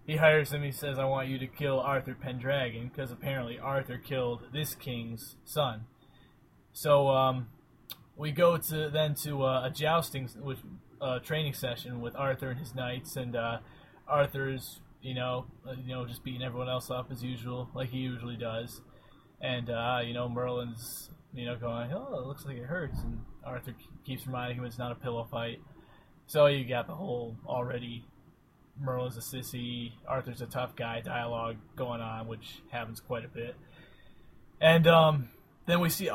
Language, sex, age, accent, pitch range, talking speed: English, male, 20-39, American, 125-145 Hz, 175 wpm